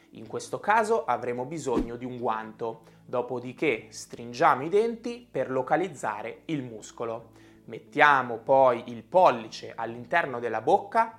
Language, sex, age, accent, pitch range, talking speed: Italian, male, 20-39, native, 120-185 Hz, 125 wpm